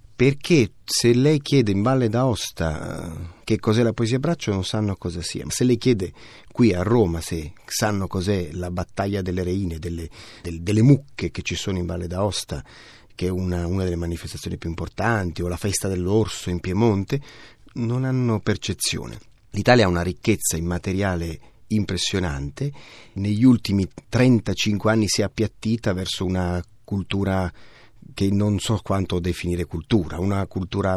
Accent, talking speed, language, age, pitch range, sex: native, 155 wpm, Italian, 30-49, 90-115 Hz, male